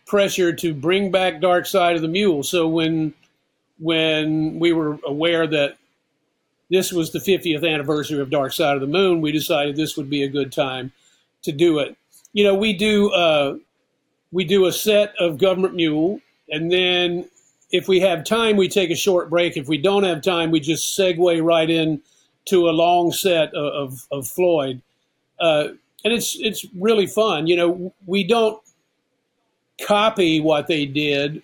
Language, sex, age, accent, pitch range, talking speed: English, male, 50-69, American, 155-190 Hz, 180 wpm